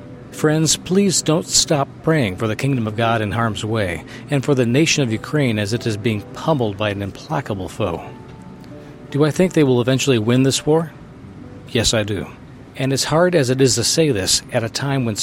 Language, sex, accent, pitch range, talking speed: English, male, American, 110-145 Hz, 210 wpm